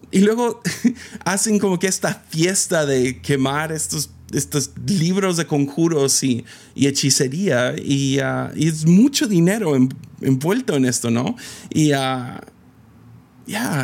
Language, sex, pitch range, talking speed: Spanish, male, 115-160 Hz, 140 wpm